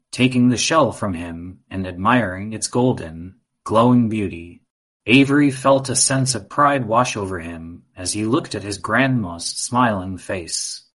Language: English